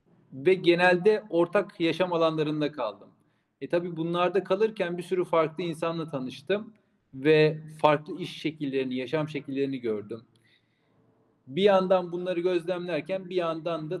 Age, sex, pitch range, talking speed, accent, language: 40-59, male, 145-175 Hz, 125 wpm, native, Turkish